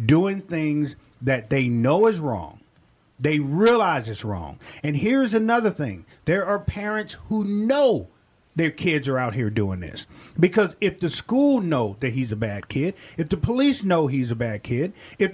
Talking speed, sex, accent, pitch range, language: 180 wpm, male, American, 135-210 Hz, English